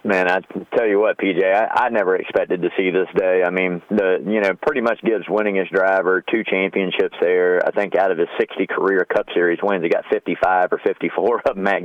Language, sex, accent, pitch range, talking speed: English, male, American, 90-130 Hz, 230 wpm